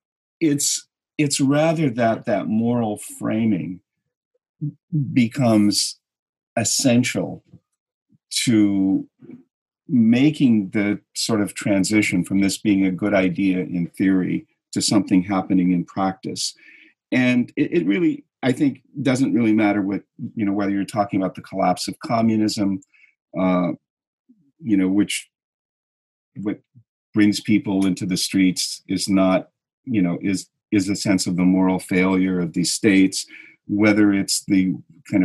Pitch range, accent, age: 90-115 Hz, American, 40-59